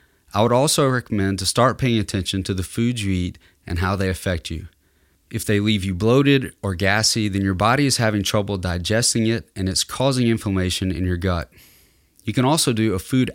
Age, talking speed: 30-49, 205 wpm